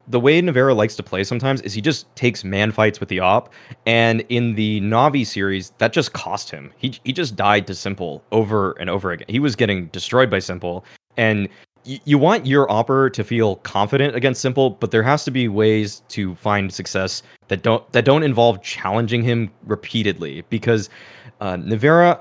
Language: English